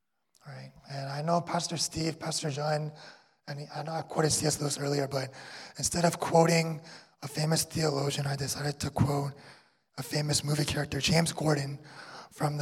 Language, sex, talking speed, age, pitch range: Italian, male, 160 wpm, 20-39, 140-155 Hz